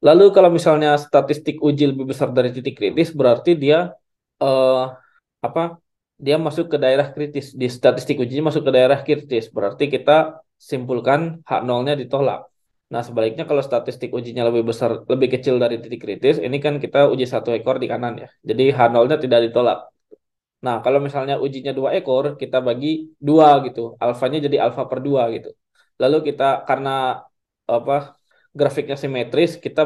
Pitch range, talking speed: 125-145 Hz, 160 wpm